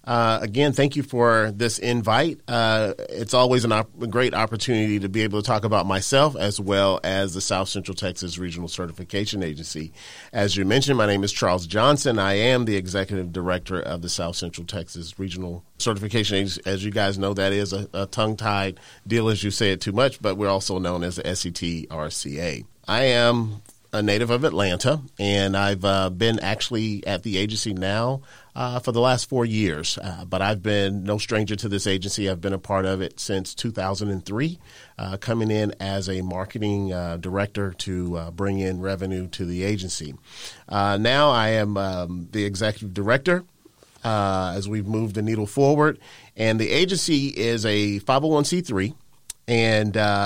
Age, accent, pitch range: 40-59, American, 95-115 Hz